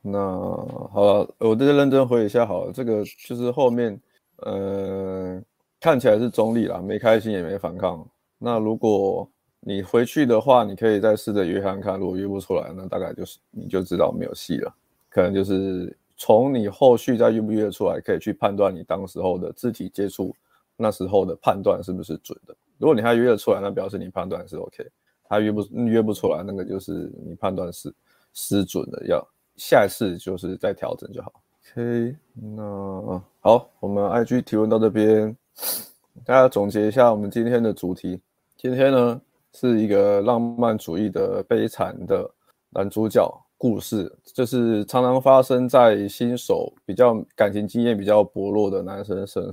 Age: 20-39